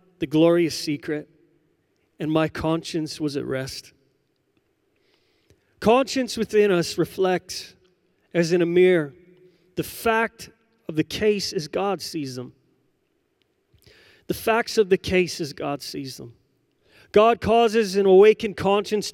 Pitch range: 160-210 Hz